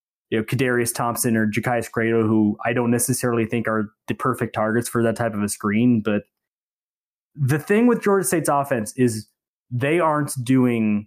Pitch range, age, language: 115-150 Hz, 20-39, English